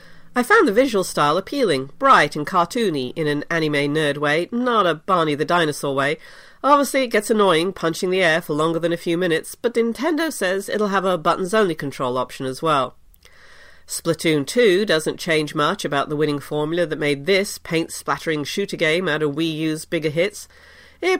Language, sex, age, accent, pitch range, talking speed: English, female, 40-59, British, 150-205 Hz, 185 wpm